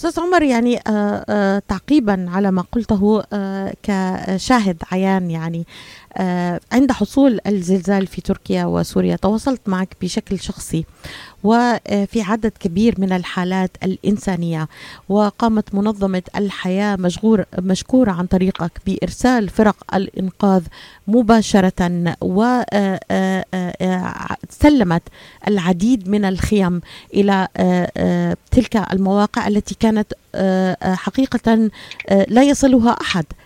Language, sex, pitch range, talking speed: Arabic, female, 185-215 Hz, 90 wpm